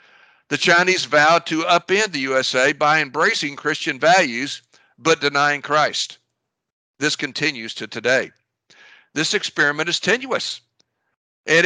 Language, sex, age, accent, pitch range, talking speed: English, male, 60-79, American, 135-180 Hz, 120 wpm